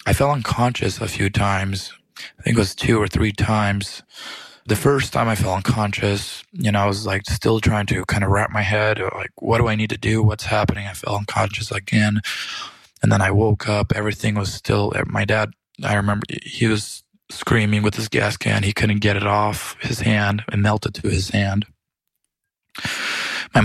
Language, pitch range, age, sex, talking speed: English, 100-110 Hz, 20-39, male, 200 wpm